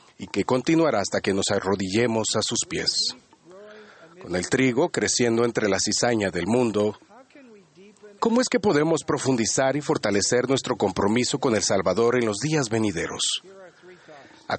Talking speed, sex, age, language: 150 wpm, male, 40-59, Spanish